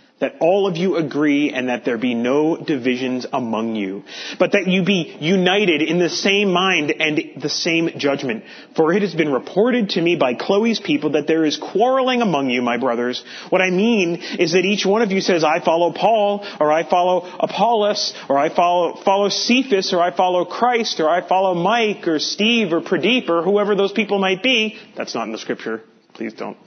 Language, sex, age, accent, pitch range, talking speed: English, male, 30-49, American, 170-245 Hz, 205 wpm